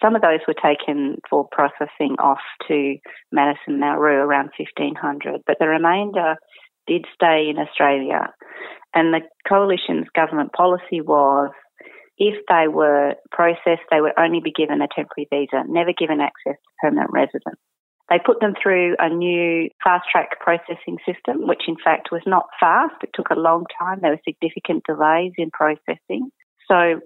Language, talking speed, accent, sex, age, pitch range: English, 160 wpm, Australian, female, 30-49, 150-175 Hz